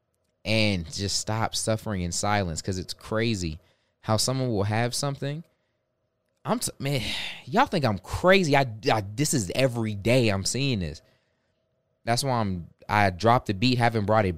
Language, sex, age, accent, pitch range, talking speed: English, male, 20-39, American, 95-120 Hz, 165 wpm